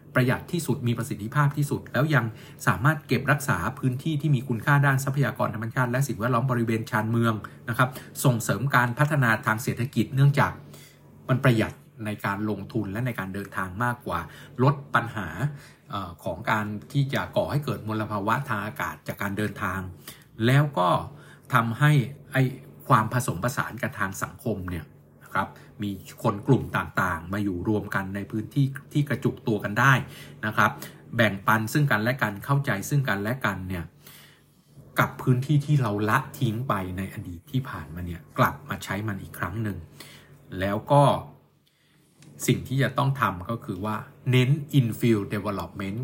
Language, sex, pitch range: Thai, male, 105-135 Hz